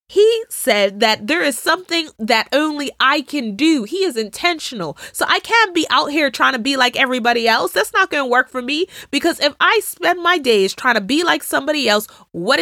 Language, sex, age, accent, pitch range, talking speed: English, female, 20-39, American, 225-330 Hz, 220 wpm